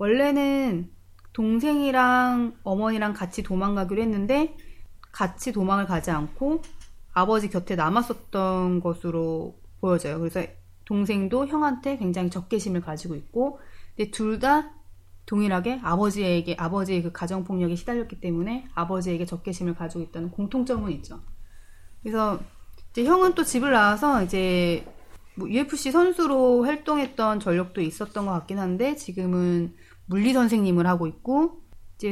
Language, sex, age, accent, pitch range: Korean, female, 30-49, native, 175-250 Hz